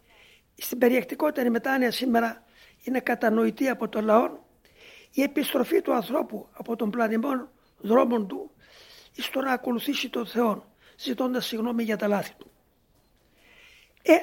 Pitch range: 230-300 Hz